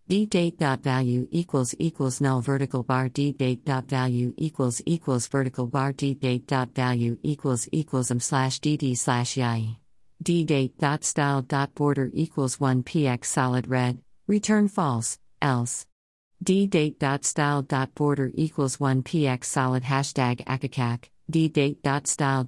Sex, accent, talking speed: female, American, 155 wpm